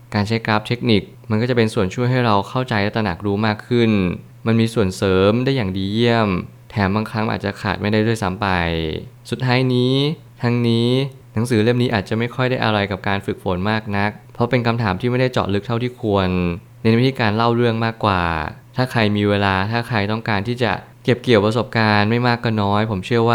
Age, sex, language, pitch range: 20-39, male, Thai, 100-120 Hz